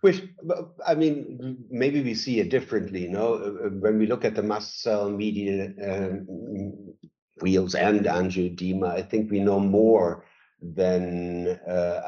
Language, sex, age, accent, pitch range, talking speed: English, male, 60-79, German, 90-110 Hz, 145 wpm